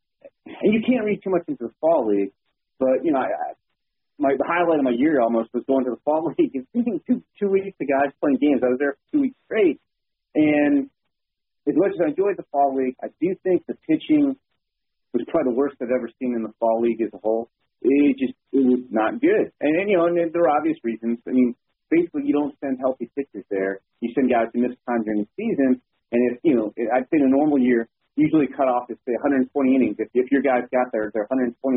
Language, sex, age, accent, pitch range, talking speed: English, male, 30-49, American, 115-180 Hz, 245 wpm